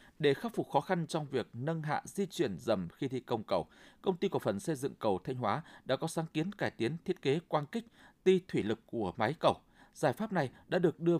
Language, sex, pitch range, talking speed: Vietnamese, male, 135-185 Hz, 250 wpm